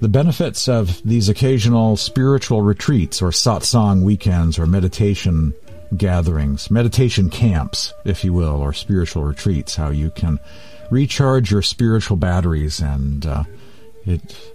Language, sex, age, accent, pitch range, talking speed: English, male, 50-69, American, 85-125 Hz, 130 wpm